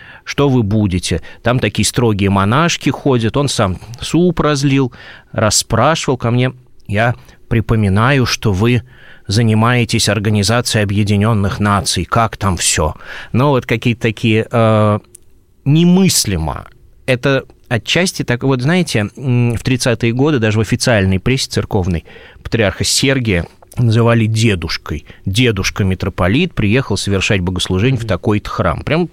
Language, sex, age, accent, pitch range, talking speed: Russian, male, 30-49, native, 100-125 Hz, 120 wpm